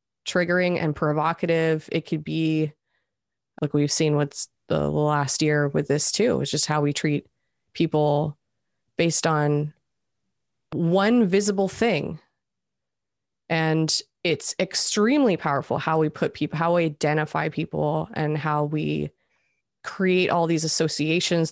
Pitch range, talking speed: 150-170 Hz, 130 wpm